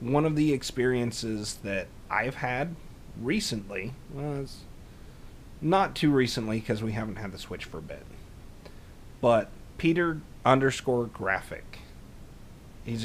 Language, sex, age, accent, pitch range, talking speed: English, male, 30-49, American, 100-125 Hz, 120 wpm